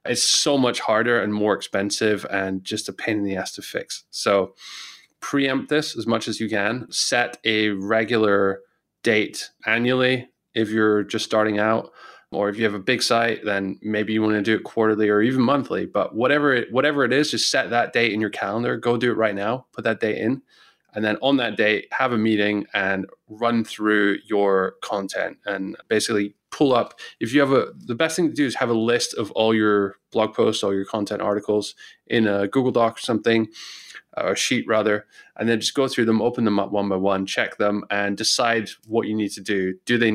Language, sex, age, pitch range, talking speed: English, male, 20-39, 105-115 Hz, 215 wpm